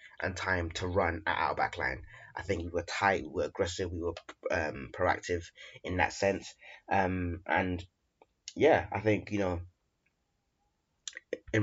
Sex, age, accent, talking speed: male, 20-39, British, 160 wpm